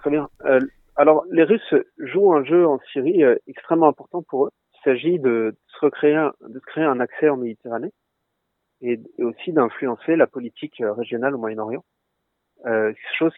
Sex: male